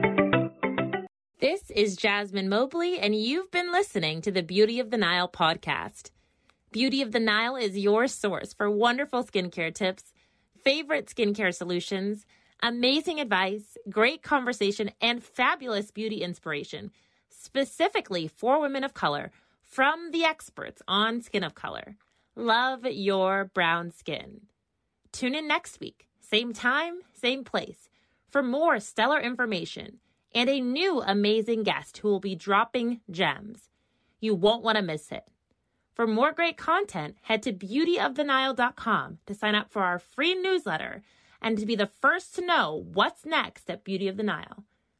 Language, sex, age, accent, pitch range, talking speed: English, female, 30-49, American, 200-275 Hz, 145 wpm